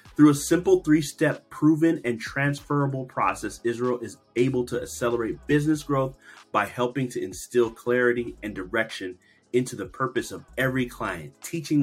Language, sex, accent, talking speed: English, male, American, 145 wpm